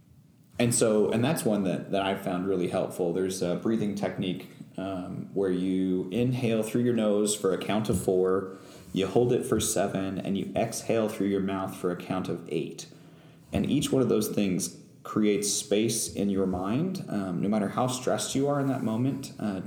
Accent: American